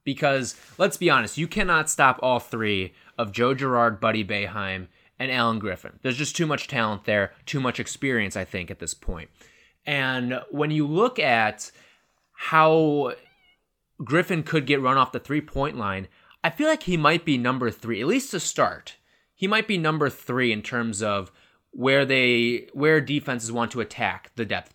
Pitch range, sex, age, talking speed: 105-140 Hz, male, 20-39, 180 wpm